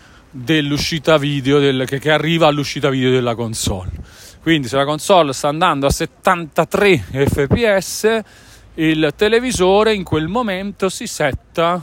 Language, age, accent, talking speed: Italian, 40-59, native, 130 wpm